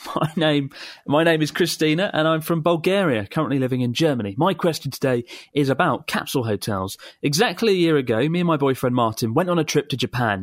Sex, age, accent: male, 30-49, British